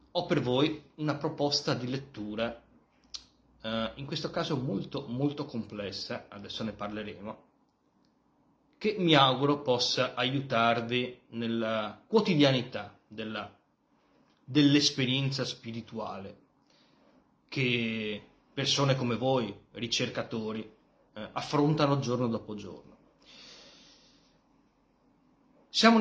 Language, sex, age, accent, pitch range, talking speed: Italian, male, 30-49, native, 115-150 Hz, 85 wpm